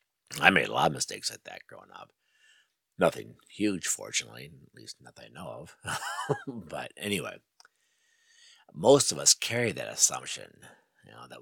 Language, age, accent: English, 50-69, American